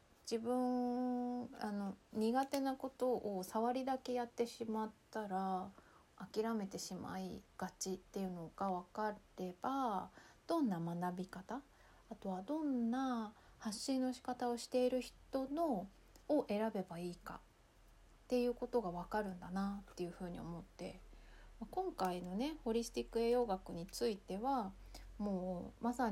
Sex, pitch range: female, 185-240 Hz